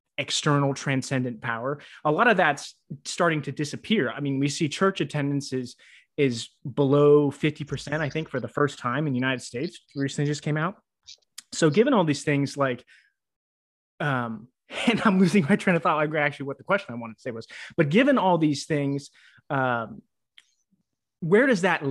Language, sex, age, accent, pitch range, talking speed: English, male, 20-39, American, 125-160 Hz, 180 wpm